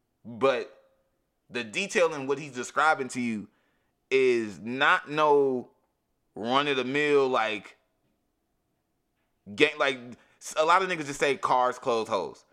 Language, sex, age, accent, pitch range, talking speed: English, male, 20-39, American, 130-160 Hz, 120 wpm